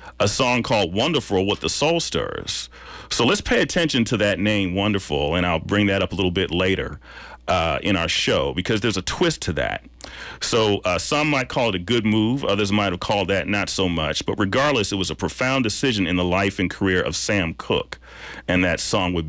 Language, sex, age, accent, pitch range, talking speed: English, male, 40-59, American, 85-120 Hz, 220 wpm